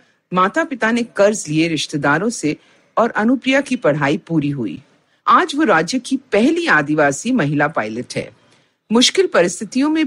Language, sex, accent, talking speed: Hindi, female, native, 150 wpm